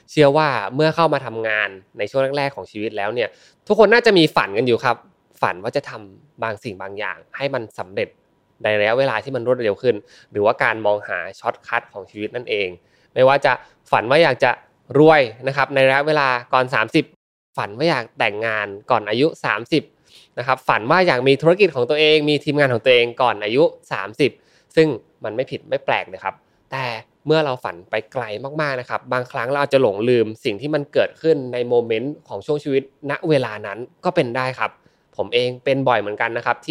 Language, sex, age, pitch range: Thai, male, 20-39, 115-155 Hz